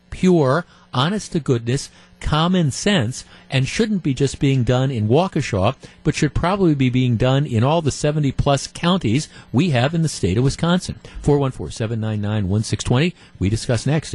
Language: English